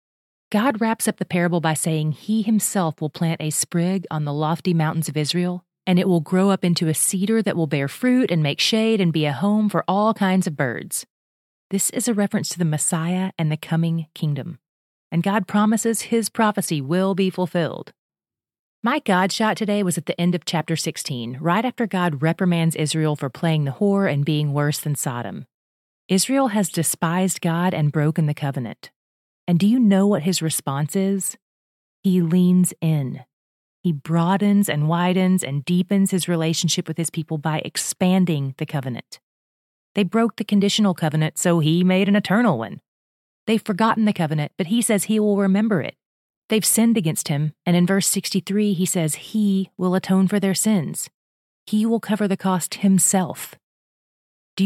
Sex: female